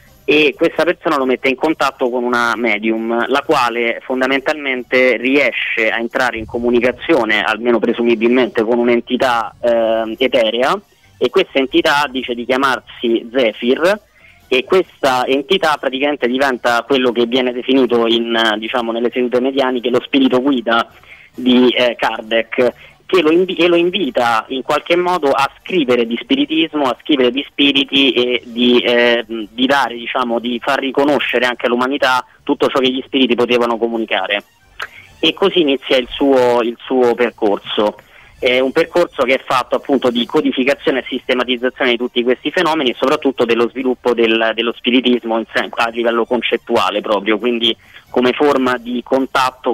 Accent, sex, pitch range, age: native, male, 120-135 Hz, 30-49